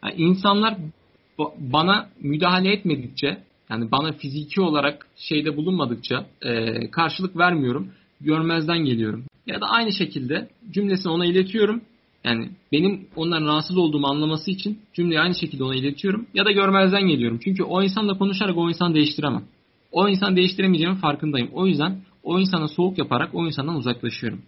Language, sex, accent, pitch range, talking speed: Turkish, male, native, 130-175 Hz, 140 wpm